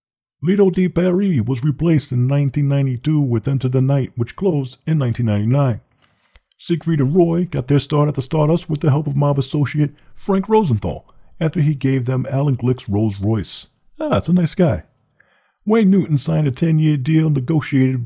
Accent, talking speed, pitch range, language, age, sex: American, 175 wpm, 125-155 Hz, English, 40-59, male